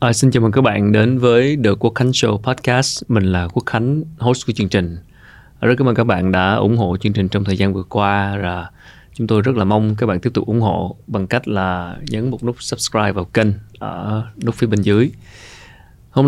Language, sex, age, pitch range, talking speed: Vietnamese, male, 20-39, 95-115 Hz, 225 wpm